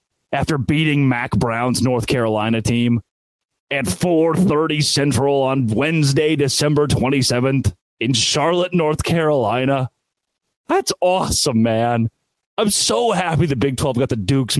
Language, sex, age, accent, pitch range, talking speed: English, male, 30-49, American, 120-170 Hz, 125 wpm